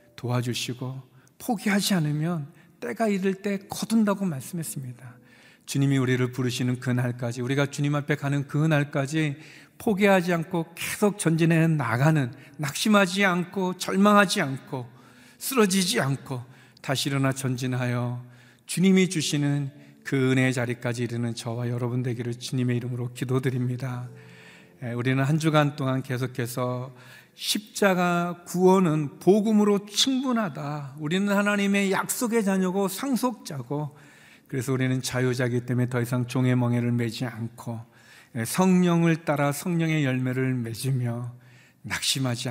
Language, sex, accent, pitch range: Korean, male, native, 125-170 Hz